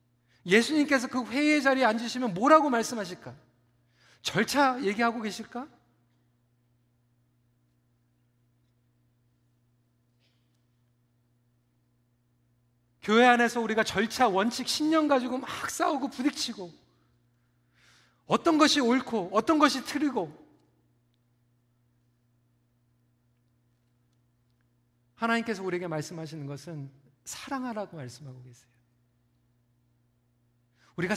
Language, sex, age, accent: Korean, male, 40-59, native